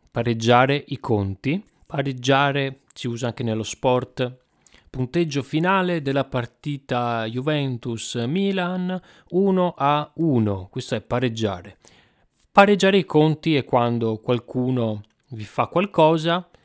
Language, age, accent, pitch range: Italian, 30-49, native, 110-150 Hz